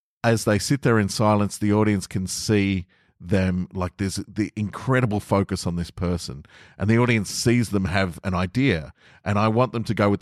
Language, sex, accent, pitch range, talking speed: English, male, Australian, 90-110 Hz, 200 wpm